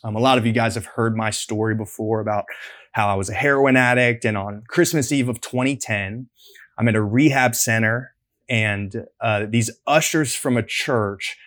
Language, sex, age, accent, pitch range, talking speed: English, male, 20-39, American, 115-150 Hz, 190 wpm